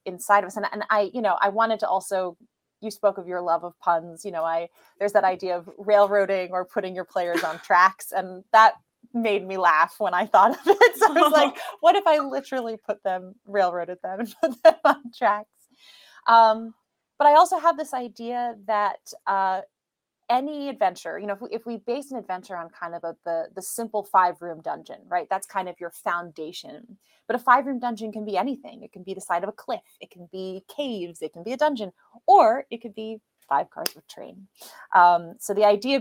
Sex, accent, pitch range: female, American, 180-240 Hz